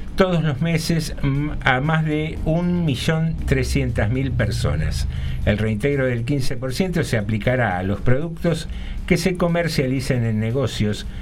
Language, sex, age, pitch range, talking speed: Spanish, male, 60-79, 110-150 Hz, 120 wpm